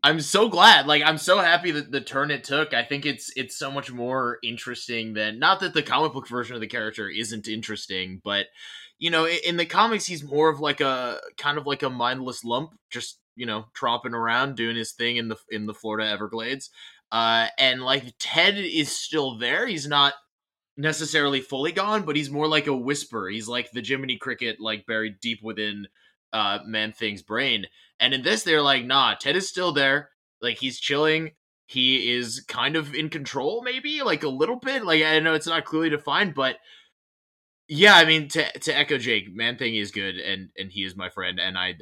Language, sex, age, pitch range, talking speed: English, male, 20-39, 105-145 Hz, 205 wpm